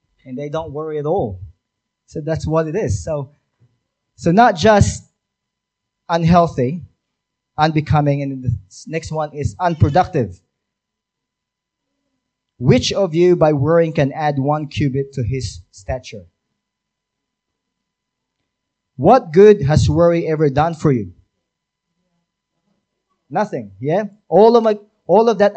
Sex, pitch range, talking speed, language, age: male, 125-170 Hz, 120 wpm, English, 20-39